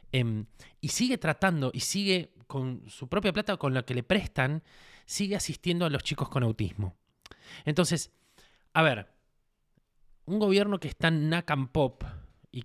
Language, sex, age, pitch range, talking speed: Spanish, male, 20-39, 120-155 Hz, 160 wpm